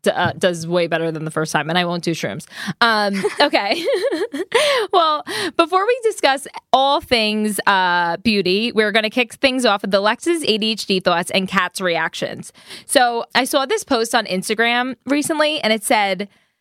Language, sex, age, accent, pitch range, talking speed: English, female, 20-39, American, 200-265 Hz, 175 wpm